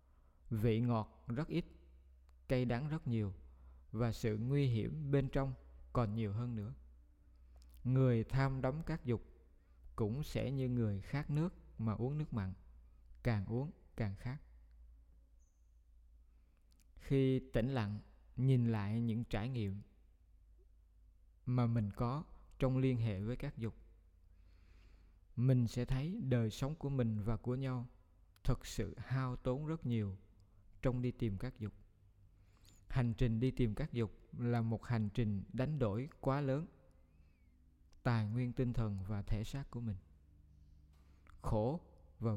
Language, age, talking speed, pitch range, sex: Vietnamese, 20-39, 140 wpm, 85-125 Hz, male